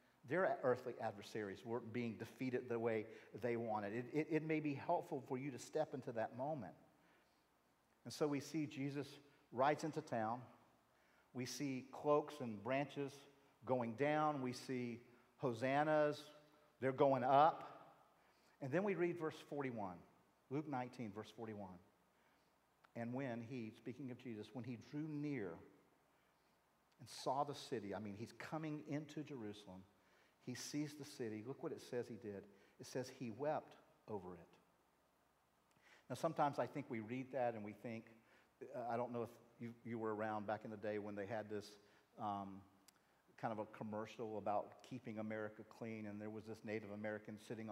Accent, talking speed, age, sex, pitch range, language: American, 165 wpm, 50-69, male, 110-140 Hz, English